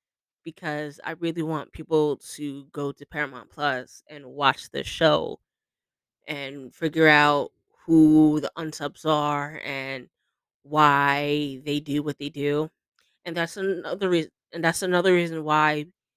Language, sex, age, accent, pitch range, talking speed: English, female, 20-39, American, 145-165 Hz, 135 wpm